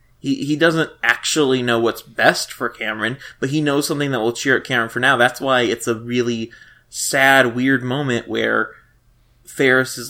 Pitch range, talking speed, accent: 120-140 Hz, 185 wpm, American